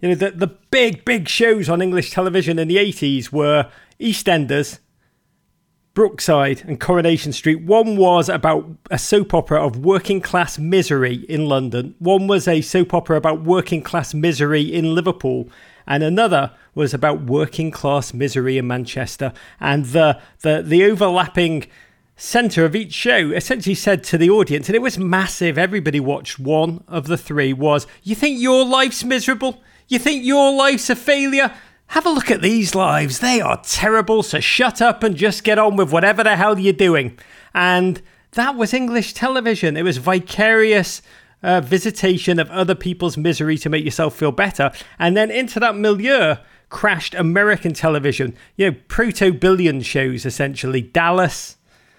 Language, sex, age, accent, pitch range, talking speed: English, male, 40-59, British, 155-210 Hz, 165 wpm